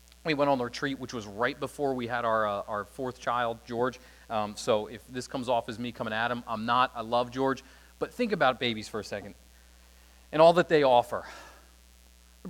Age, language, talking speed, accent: 30-49, English, 220 wpm, American